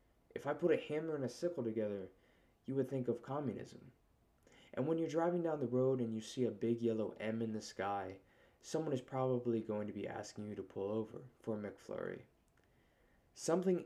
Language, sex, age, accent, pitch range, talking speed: English, male, 20-39, American, 110-140 Hz, 195 wpm